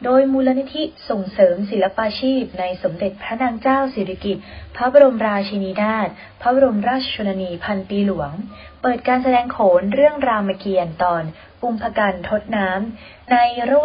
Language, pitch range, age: Thai, 185-235 Hz, 20-39